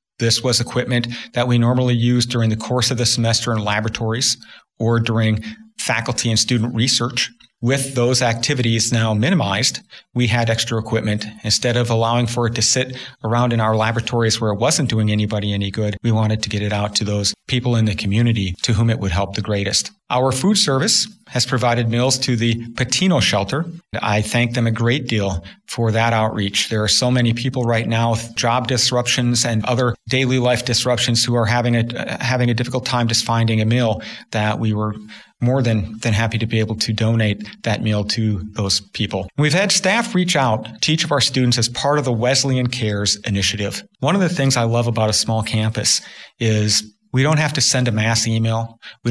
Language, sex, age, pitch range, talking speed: English, male, 40-59, 110-125 Hz, 205 wpm